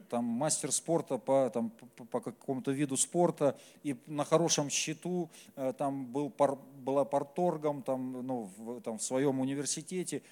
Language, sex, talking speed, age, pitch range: Russian, male, 140 wpm, 40-59, 115-165 Hz